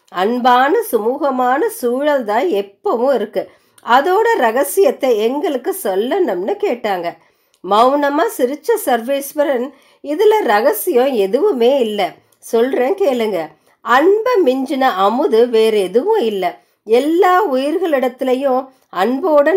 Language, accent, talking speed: Tamil, native, 50 wpm